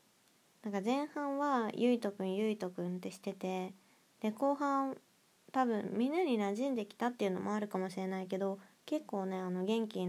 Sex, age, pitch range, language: female, 20-39, 190-240 Hz, Japanese